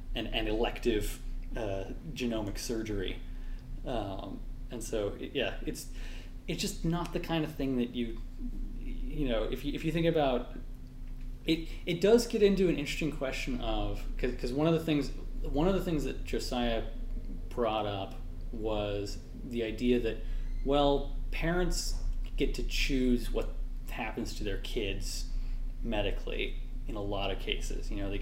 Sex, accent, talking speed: male, American, 155 wpm